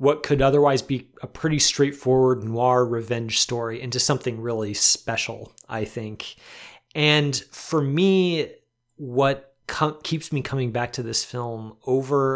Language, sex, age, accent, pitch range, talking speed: English, male, 30-49, American, 120-140 Hz, 140 wpm